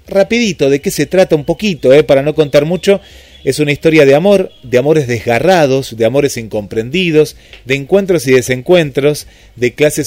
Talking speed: 175 wpm